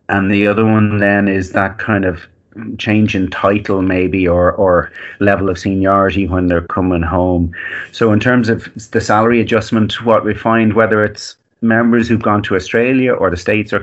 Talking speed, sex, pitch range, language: 185 wpm, male, 90-105 Hz, English